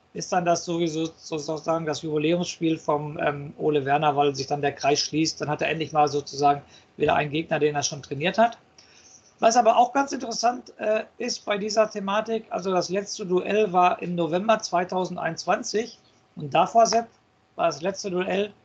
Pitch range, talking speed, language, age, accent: 170-225 Hz, 180 wpm, German, 50-69, German